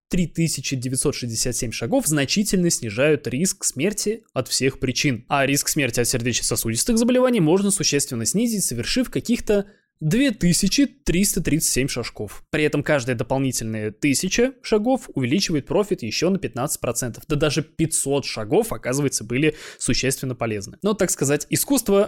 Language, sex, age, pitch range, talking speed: Russian, male, 20-39, 125-185 Hz, 120 wpm